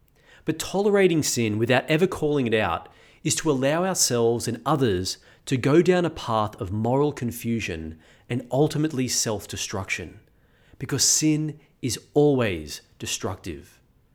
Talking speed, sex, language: 125 wpm, male, English